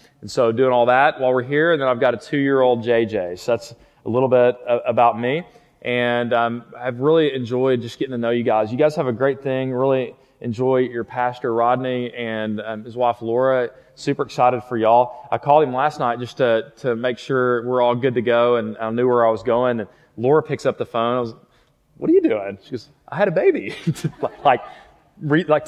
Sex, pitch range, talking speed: male, 120-135 Hz, 220 wpm